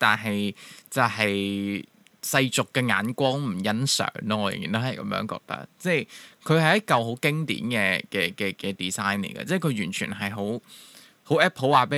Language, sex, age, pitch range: Chinese, male, 20-39, 105-155 Hz